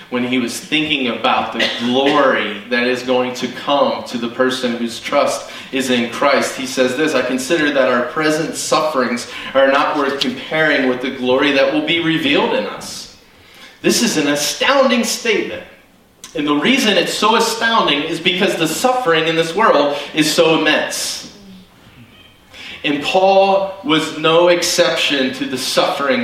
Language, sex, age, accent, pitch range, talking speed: English, male, 30-49, American, 120-170 Hz, 160 wpm